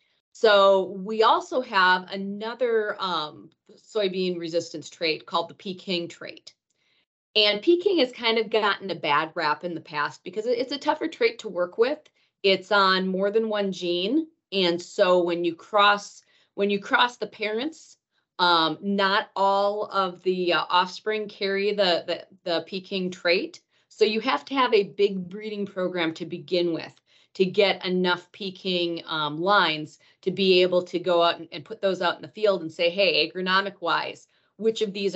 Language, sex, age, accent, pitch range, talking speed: English, female, 30-49, American, 170-205 Hz, 175 wpm